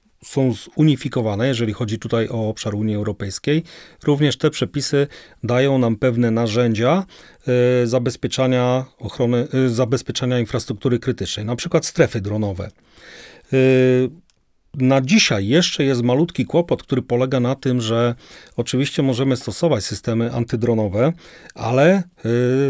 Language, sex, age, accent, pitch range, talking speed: Polish, male, 40-59, native, 115-140 Hz, 110 wpm